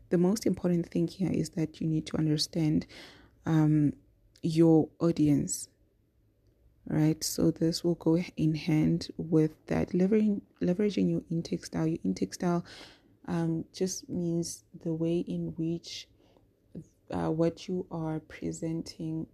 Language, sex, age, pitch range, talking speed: English, female, 20-39, 150-170 Hz, 130 wpm